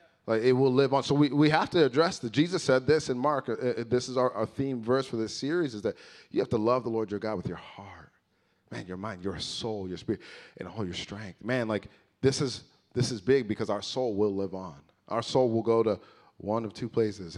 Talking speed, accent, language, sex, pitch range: 255 wpm, American, English, male, 105-145 Hz